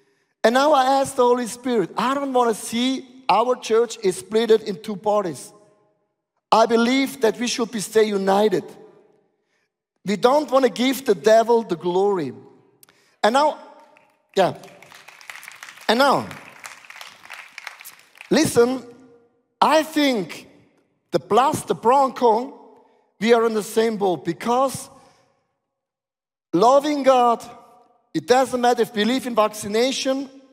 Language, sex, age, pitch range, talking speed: English, male, 50-69, 210-270 Hz, 130 wpm